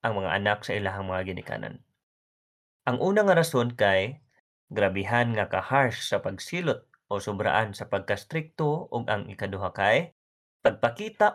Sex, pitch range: male, 95-140 Hz